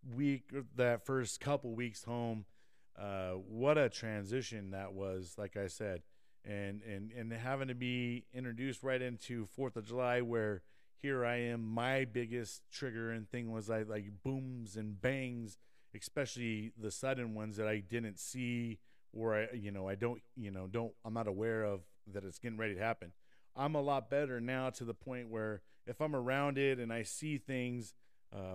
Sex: male